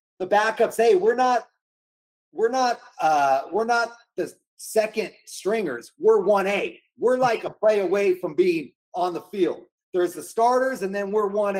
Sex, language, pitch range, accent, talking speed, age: male, English, 185-225 Hz, American, 160 wpm, 30-49